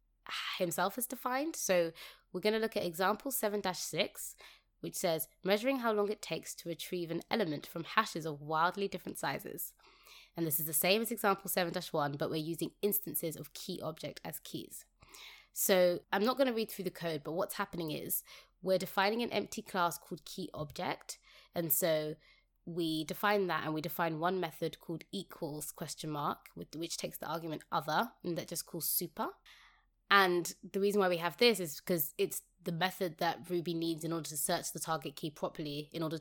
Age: 20-39